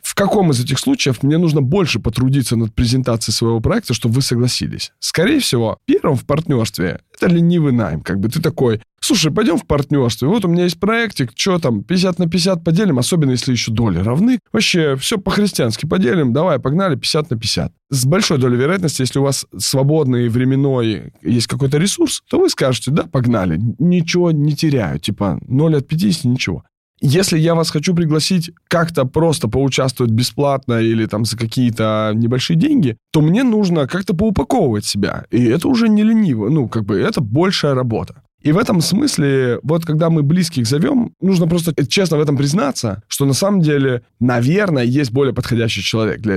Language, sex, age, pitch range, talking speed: Russian, male, 20-39, 120-175 Hz, 180 wpm